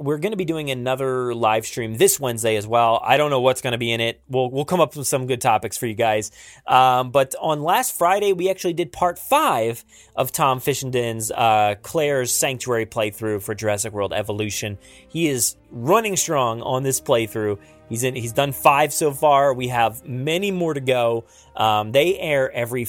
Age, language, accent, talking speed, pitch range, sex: 30-49, English, American, 200 wpm, 110-160 Hz, male